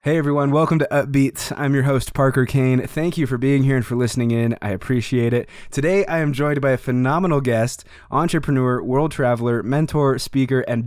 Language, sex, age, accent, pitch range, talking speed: English, male, 20-39, American, 115-140 Hz, 200 wpm